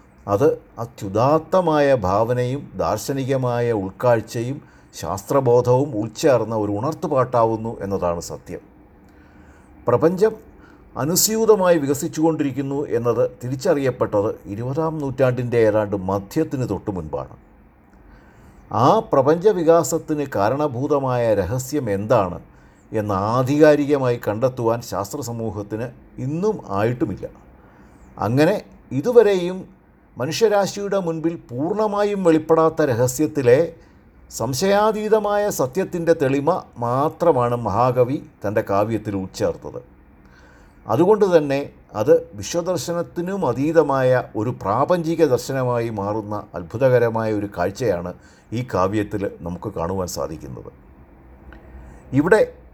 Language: Malayalam